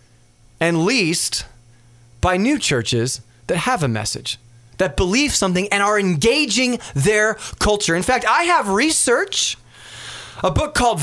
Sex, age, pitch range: male, 30-49, 175-245 Hz